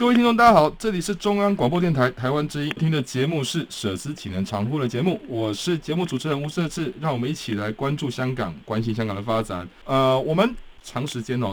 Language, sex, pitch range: Chinese, male, 95-140 Hz